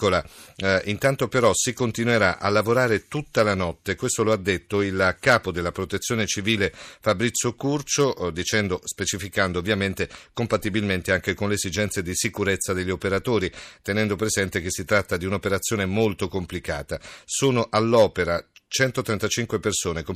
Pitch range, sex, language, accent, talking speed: 95-115 Hz, male, Italian, native, 135 wpm